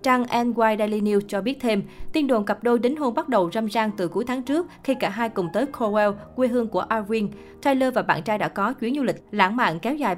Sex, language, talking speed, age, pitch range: female, Vietnamese, 260 wpm, 20-39, 195-240 Hz